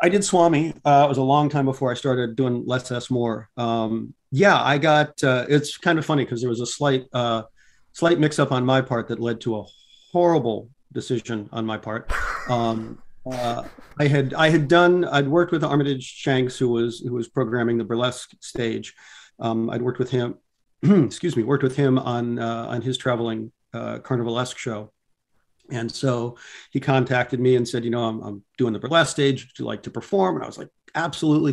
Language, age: English, 40-59